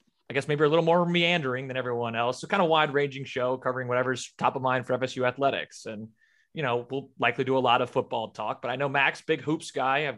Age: 30-49